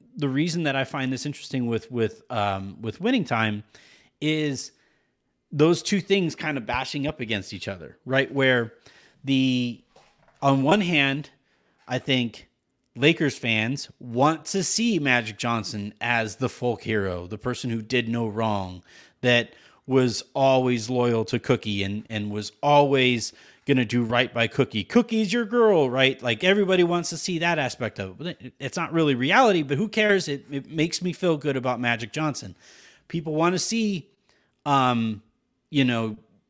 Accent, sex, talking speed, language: American, male, 165 wpm, English